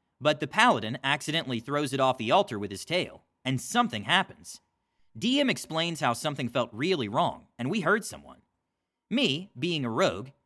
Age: 30-49